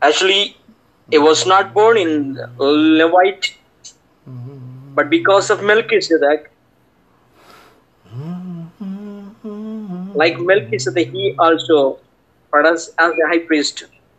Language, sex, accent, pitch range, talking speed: English, male, Indian, 140-190 Hz, 95 wpm